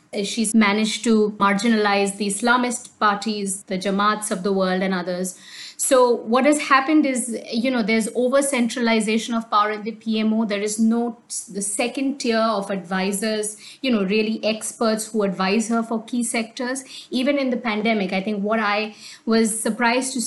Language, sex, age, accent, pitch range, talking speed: English, female, 50-69, Indian, 200-230 Hz, 170 wpm